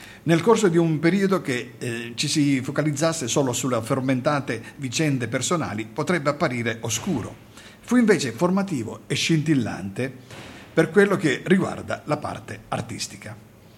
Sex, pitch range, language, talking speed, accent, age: male, 115-165 Hz, Italian, 130 wpm, native, 50-69